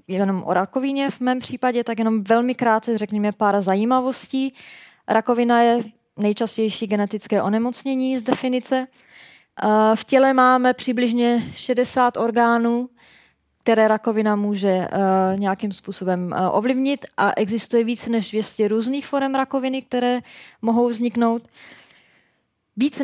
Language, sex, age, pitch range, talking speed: Czech, female, 20-39, 210-250 Hz, 115 wpm